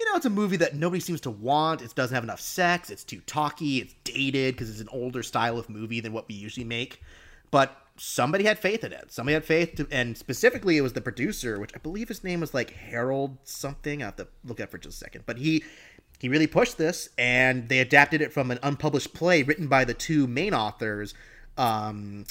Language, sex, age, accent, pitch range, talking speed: English, male, 30-49, American, 125-165 Hz, 235 wpm